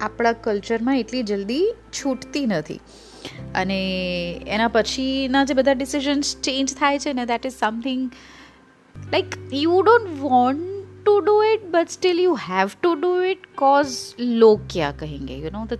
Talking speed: 155 wpm